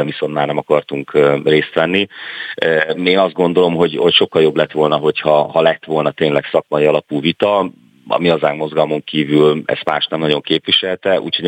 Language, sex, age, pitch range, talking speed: Hungarian, male, 40-59, 75-95 Hz, 175 wpm